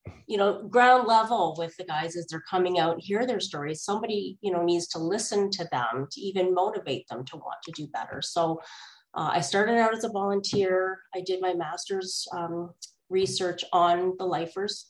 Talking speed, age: 195 wpm, 30-49